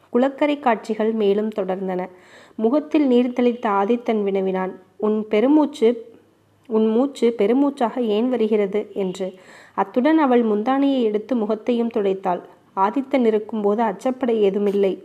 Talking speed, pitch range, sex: 110 wpm, 195-240 Hz, female